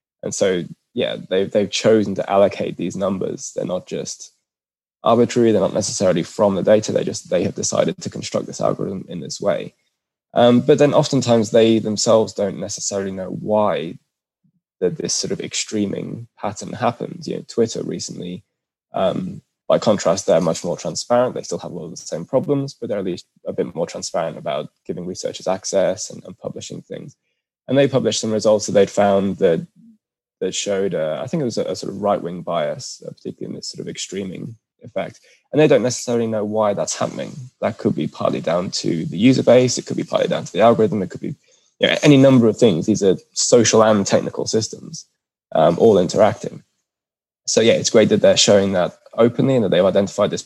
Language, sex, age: English, male, 10-29